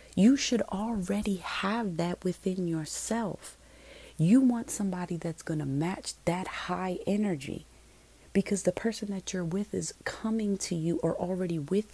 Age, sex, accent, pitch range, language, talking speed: 30-49, female, American, 135-185 Hz, English, 150 wpm